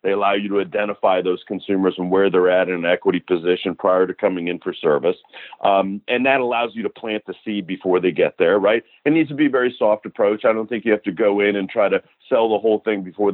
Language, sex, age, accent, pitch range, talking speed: English, male, 50-69, American, 95-115 Hz, 265 wpm